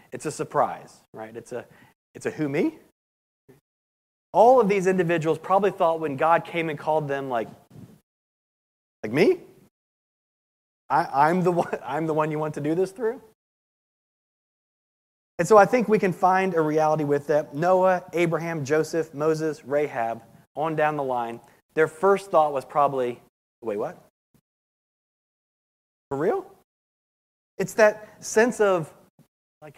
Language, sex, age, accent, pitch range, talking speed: English, male, 30-49, American, 145-185 Hz, 145 wpm